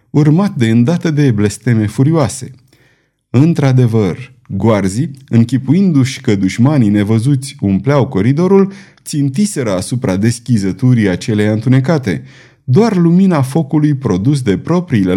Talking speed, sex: 100 wpm, male